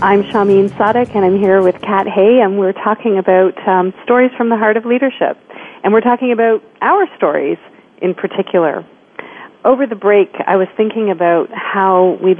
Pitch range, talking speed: 180-220 Hz, 180 wpm